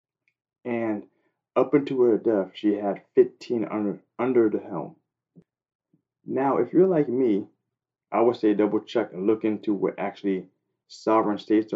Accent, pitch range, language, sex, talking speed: American, 100-135 Hz, English, male, 145 wpm